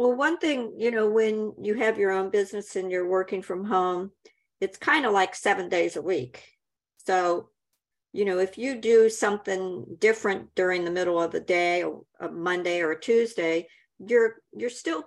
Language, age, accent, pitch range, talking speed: English, 50-69, American, 180-240 Hz, 185 wpm